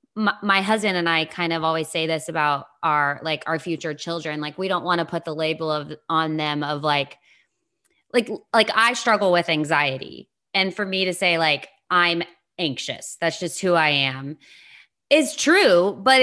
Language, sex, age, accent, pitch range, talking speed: English, female, 20-39, American, 160-205 Hz, 185 wpm